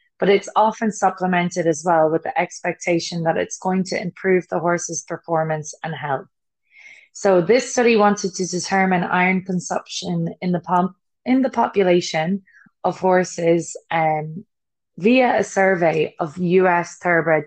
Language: English